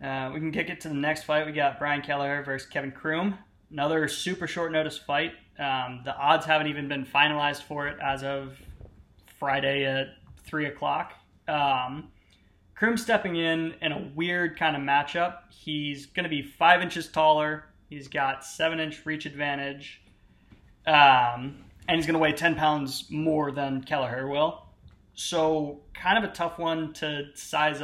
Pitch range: 135-160 Hz